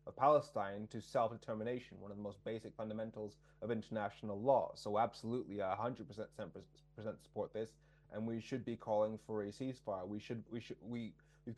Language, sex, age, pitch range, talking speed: English, male, 20-39, 105-125 Hz, 180 wpm